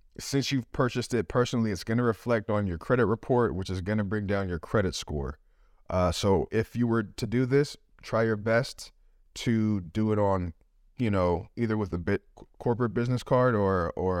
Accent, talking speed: American, 205 wpm